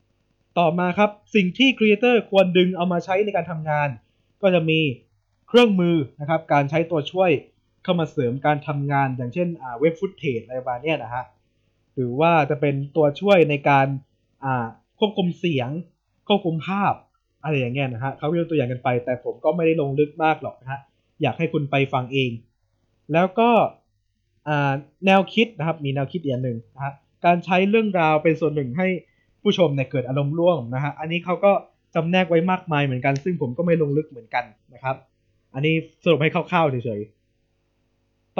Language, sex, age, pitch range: Thai, male, 20-39, 125-175 Hz